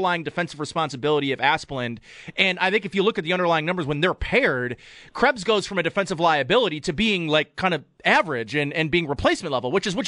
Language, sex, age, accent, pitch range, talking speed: English, male, 30-49, American, 150-195 Hz, 220 wpm